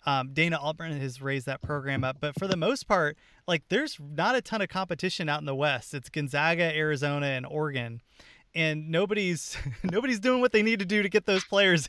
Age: 30-49